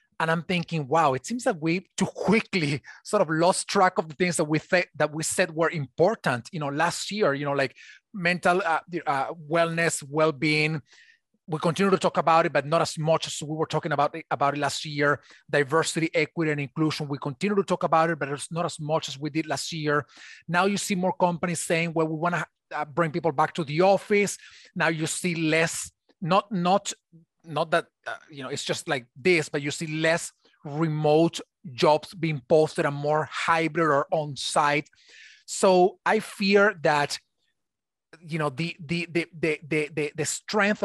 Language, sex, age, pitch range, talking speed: English, male, 30-49, 155-185 Hz, 195 wpm